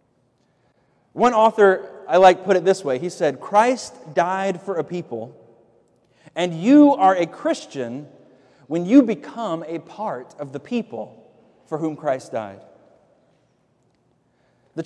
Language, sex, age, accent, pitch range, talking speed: English, male, 30-49, American, 150-220 Hz, 135 wpm